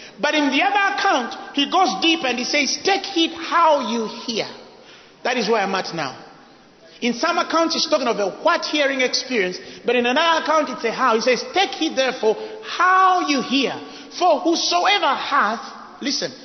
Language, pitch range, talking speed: English, 225-310 Hz, 180 wpm